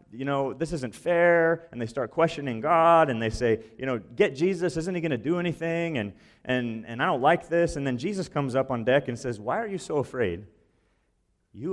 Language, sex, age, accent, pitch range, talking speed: English, male, 30-49, American, 105-145 Hz, 230 wpm